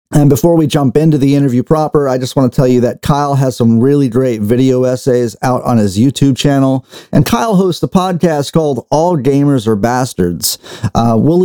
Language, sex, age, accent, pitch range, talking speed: English, male, 40-59, American, 125-165 Hz, 205 wpm